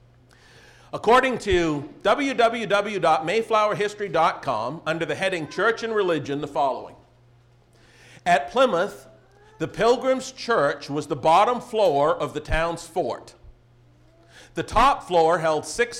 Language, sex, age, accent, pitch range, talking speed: English, male, 50-69, American, 140-200 Hz, 110 wpm